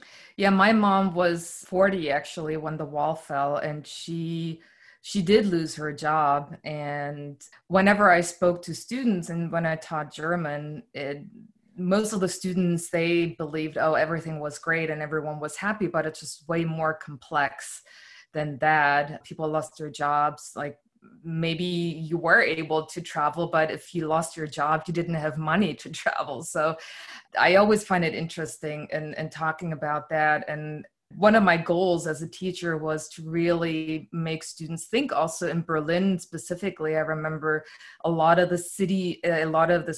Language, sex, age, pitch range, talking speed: English, female, 20-39, 150-175 Hz, 170 wpm